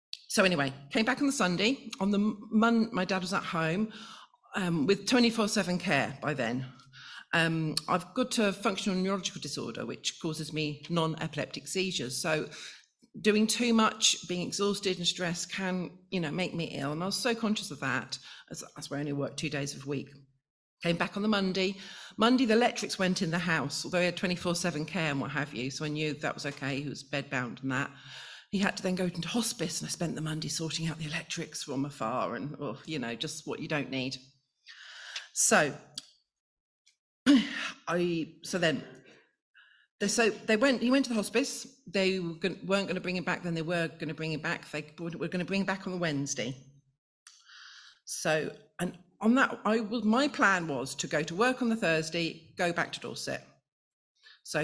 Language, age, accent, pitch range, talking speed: English, 40-59, British, 150-205 Hz, 205 wpm